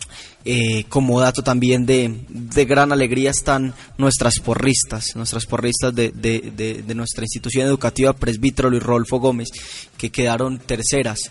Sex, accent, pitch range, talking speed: male, Colombian, 115-135 Hz, 145 wpm